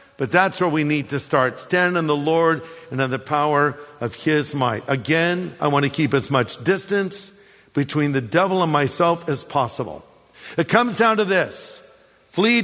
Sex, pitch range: male, 135-185 Hz